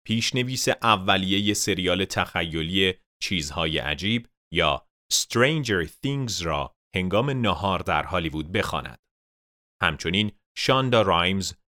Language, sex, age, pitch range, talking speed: Persian, male, 30-49, 85-115 Hz, 90 wpm